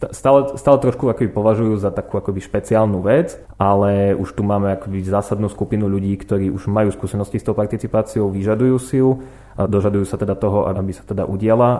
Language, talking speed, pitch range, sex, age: Slovak, 190 wpm, 95-105 Hz, male, 20-39